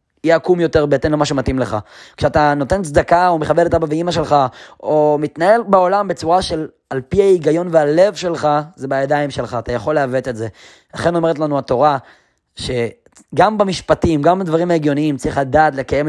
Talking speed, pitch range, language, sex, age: 175 wpm, 145-185 Hz, Hebrew, male, 20-39